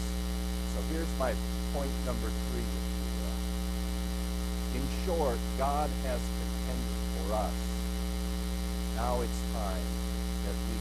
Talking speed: 90 wpm